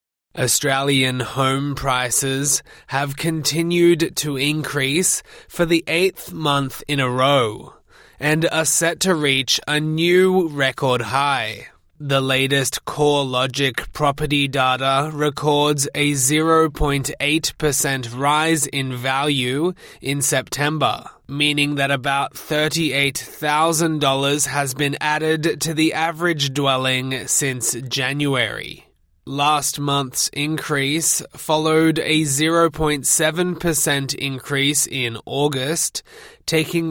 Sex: male